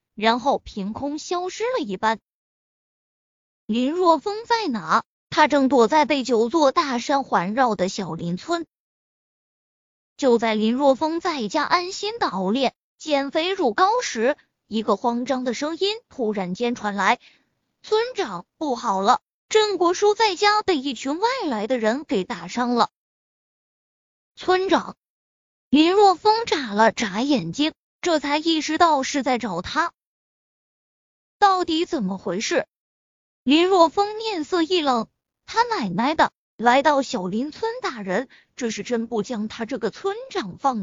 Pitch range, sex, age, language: 235-365 Hz, female, 20-39, Chinese